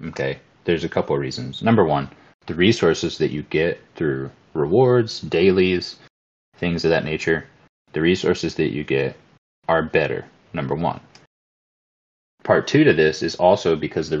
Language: English